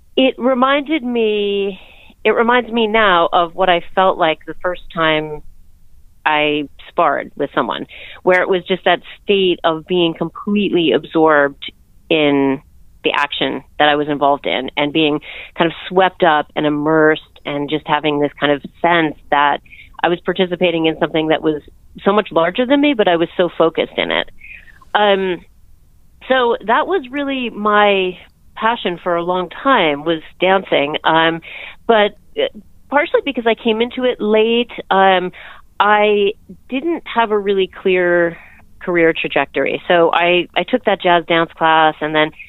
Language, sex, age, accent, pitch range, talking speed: English, female, 30-49, American, 150-200 Hz, 160 wpm